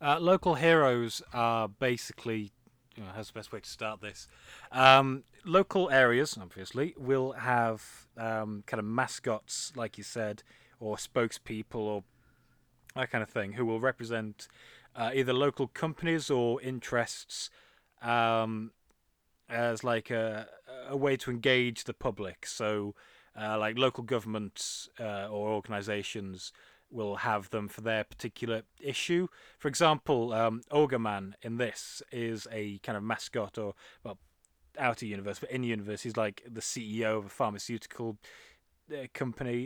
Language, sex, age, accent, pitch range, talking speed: English, male, 20-39, British, 105-125 Hz, 140 wpm